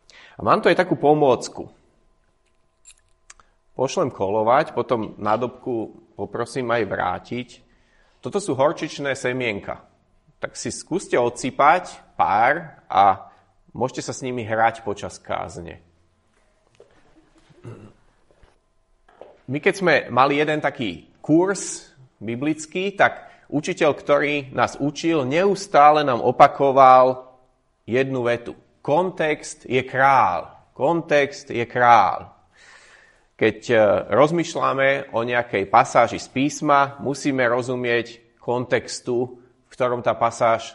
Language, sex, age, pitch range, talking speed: Slovak, male, 30-49, 120-145 Hz, 100 wpm